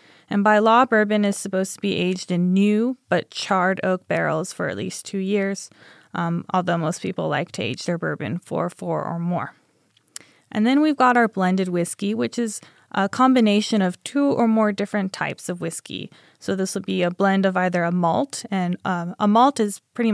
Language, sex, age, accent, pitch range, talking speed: English, female, 20-39, American, 175-205 Hz, 205 wpm